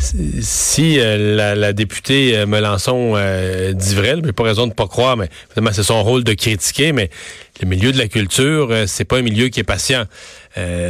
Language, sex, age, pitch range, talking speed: French, male, 30-49, 110-145 Hz, 210 wpm